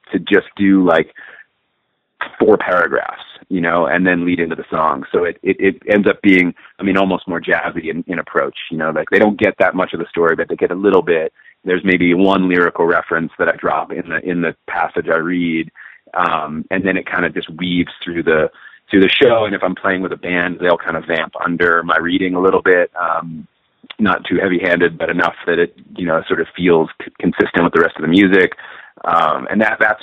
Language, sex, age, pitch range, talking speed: English, male, 30-49, 85-125 Hz, 235 wpm